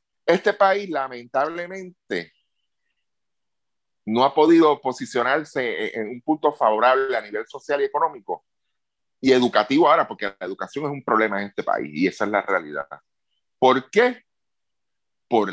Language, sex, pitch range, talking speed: Spanish, male, 130-205 Hz, 140 wpm